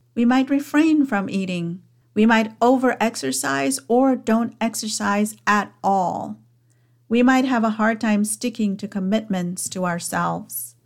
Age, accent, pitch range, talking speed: 50-69, American, 180-225 Hz, 135 wpm